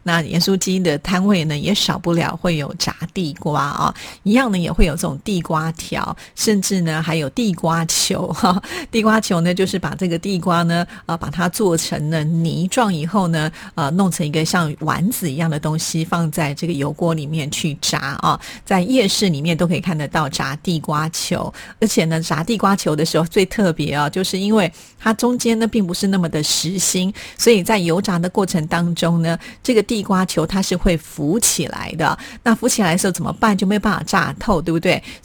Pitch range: 165-200 Hz